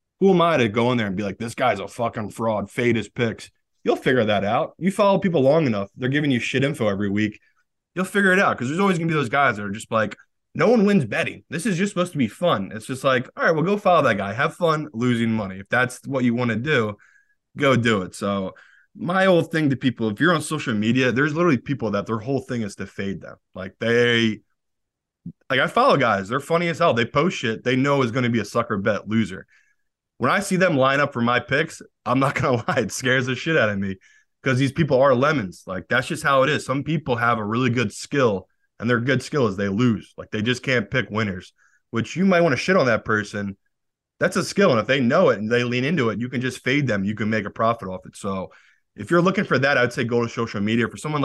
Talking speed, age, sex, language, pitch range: 270 wpm, 20-39, male, English, 110-145 Hz